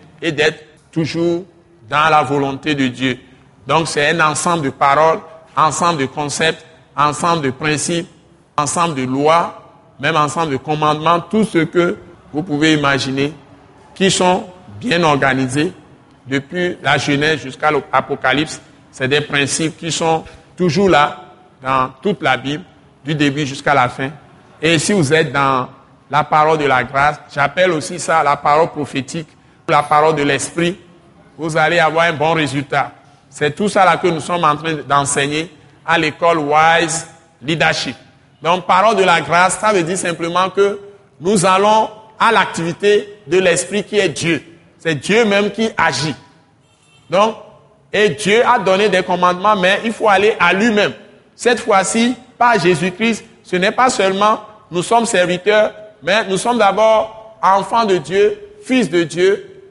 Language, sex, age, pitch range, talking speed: French, male, 60-79, 145-190 Hz, 160 wpm